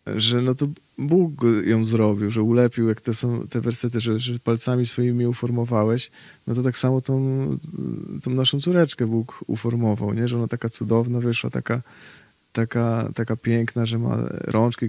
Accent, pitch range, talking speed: native, 110-125 Hz, 165 wpm